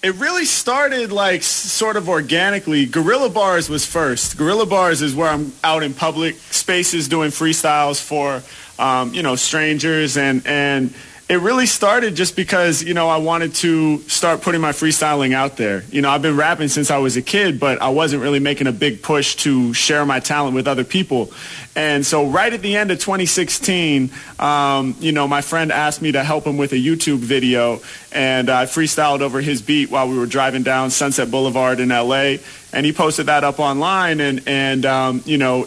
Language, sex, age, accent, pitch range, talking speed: English, male, 30-49, American, 135-160 Hz, 200 wpm